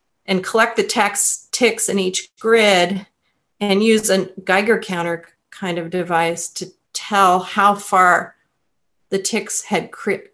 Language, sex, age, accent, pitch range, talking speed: English, female, 40-59, American, 175-220 Hz, 140 wpm